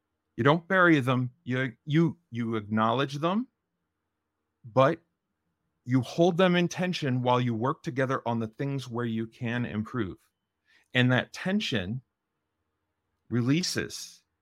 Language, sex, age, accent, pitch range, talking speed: English, male, 40-59, American, 105-135 Hz, 125 wpm